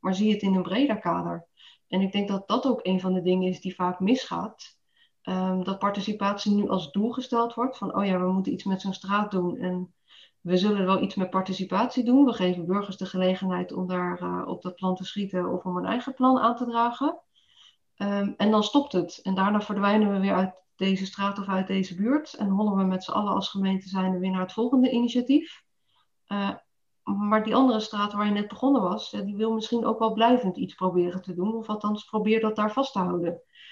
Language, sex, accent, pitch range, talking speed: Dutch, female, Dutch, 190-220 Hz, 230 wpm